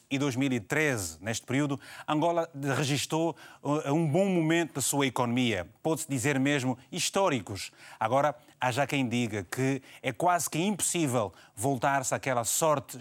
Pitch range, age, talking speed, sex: 120-150 Hz, 30-49, 140 wpm, male